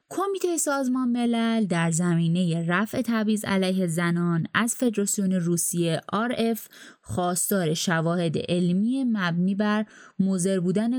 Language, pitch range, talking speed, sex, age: Persian, 170-235 Hz, 110 wpm, female, 20-39